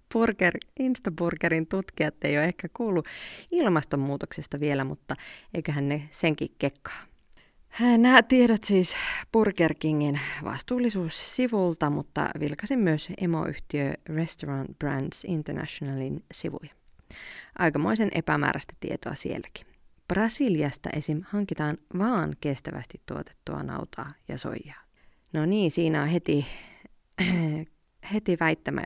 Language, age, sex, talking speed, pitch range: Finnish, 30-49, female, 100 wpm, 150-210 Hz